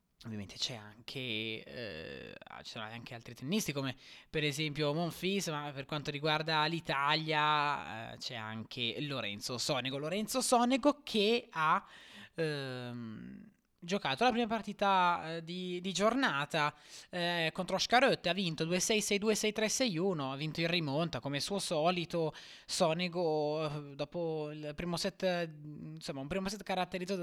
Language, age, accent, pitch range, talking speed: Italian, 20-39, native, 150-210 Hz, 140 wpm